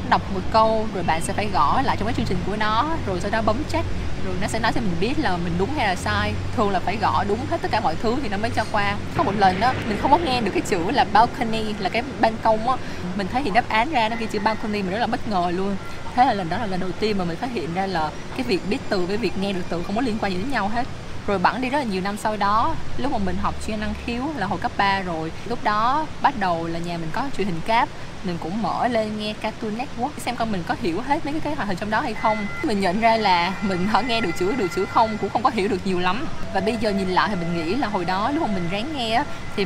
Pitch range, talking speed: 185-235 Hz, 305 wpm